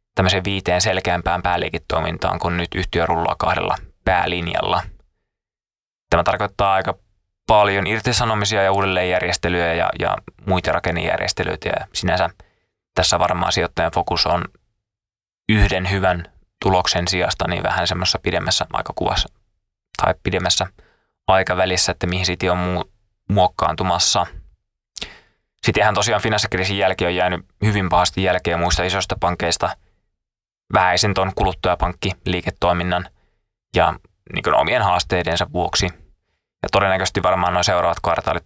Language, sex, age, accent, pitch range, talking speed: Finnish, male, 20-39, native, 90-100 Hz, 110 wpm